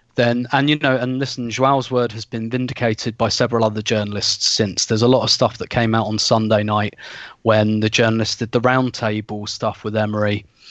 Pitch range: 110-130 Hz